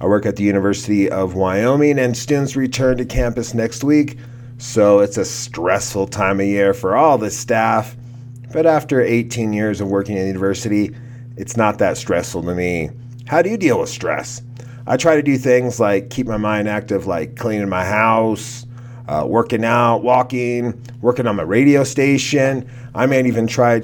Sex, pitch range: male, 110-130 Hz